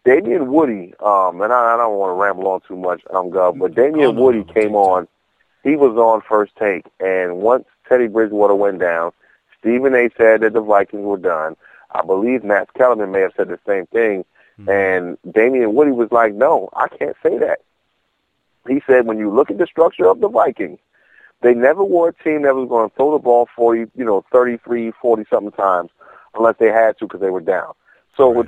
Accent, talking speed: American, 205 wpm